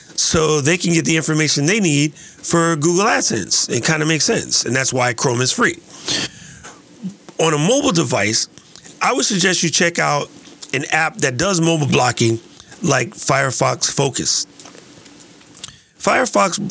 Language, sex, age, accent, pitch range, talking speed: English, male, 40-59, American, 130-170 Hz, 150 wpm